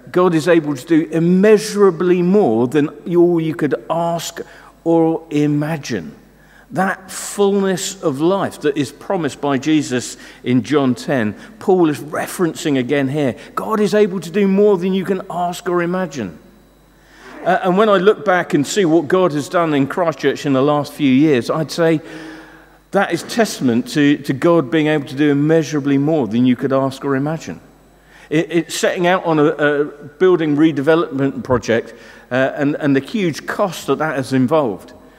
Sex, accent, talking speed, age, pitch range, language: male, British, 170 wpm, 50-69, 135-175 Hz, English